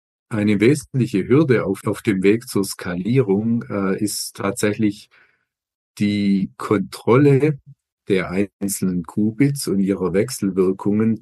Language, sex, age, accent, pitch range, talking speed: German, male, 50-69, German, 95-120 Hz, 105 wpm